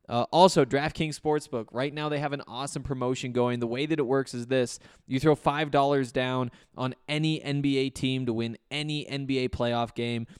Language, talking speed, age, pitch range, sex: English, 195 wpm, 20-39, 120-150 Hz, male